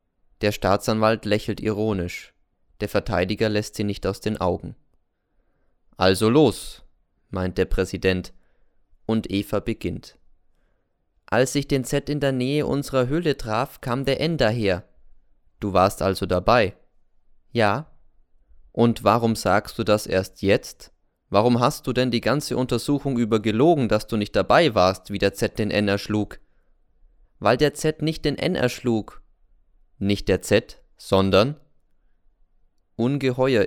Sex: male